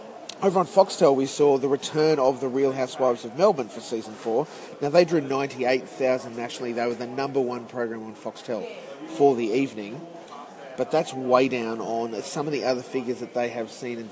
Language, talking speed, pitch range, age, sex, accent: English, 200 wpm, 115-135 Hz, 30-49, male, Australian